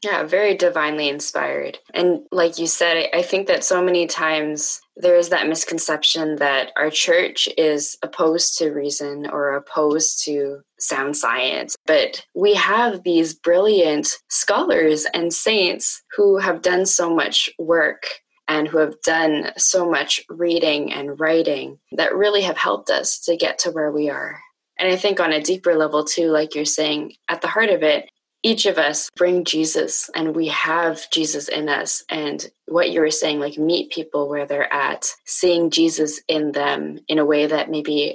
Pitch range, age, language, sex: 150-180 Hz, 20-39, English, female